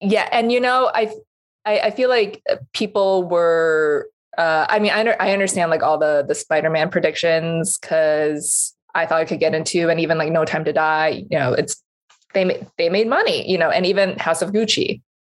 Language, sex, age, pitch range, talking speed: English, female, 20-39, 160-235 Hz, 200 wpm